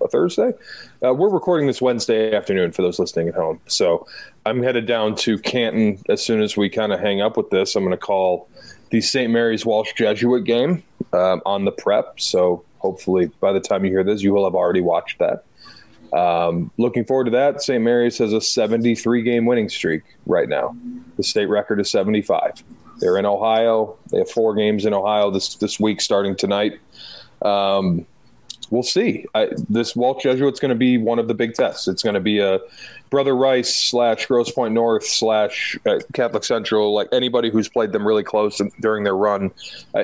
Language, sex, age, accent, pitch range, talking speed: English, male, 30-49, American, 100-120 Hz, 200 wpm